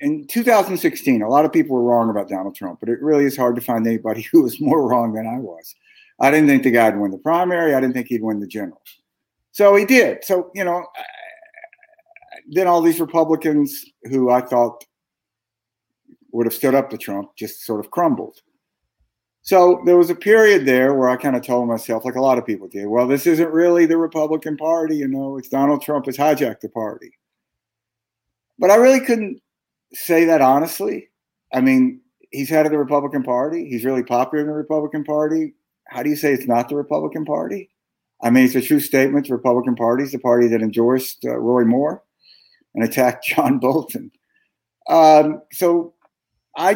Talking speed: 200 wpm